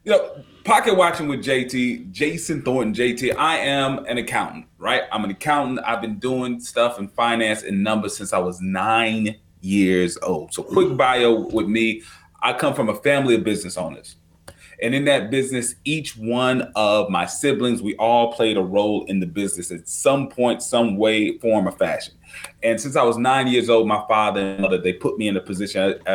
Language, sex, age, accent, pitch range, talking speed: English, male, 30-49, American, 105-130 Hz, 195 wpm